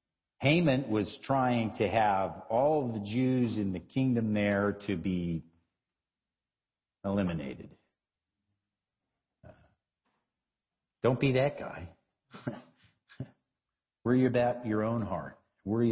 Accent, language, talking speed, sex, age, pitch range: American, English, 100 wpm, male, 50-69, 95-140 Hz